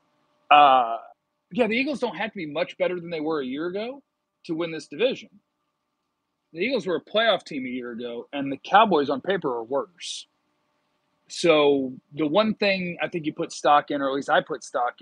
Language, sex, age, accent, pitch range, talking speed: English, male, 40-59, American, 140-180 Hz, 210 wpm